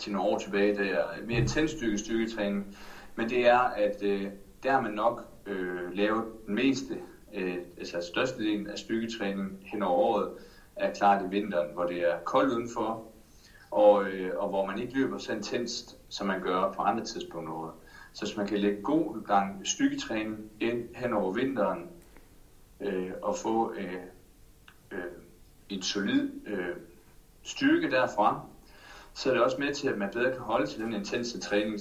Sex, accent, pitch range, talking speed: male, native, 95-115 Hz, 170 wpm